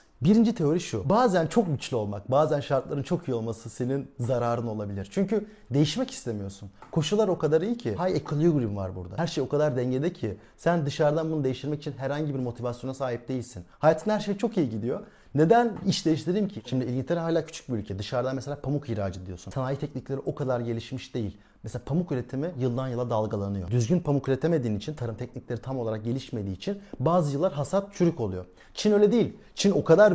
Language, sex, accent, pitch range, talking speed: Turkish, male, native, 120-175 Hz, 190 wpm